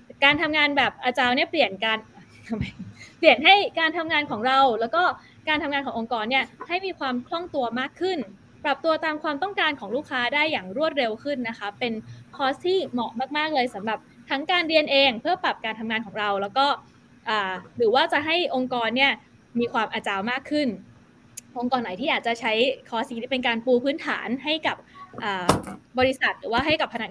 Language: Thai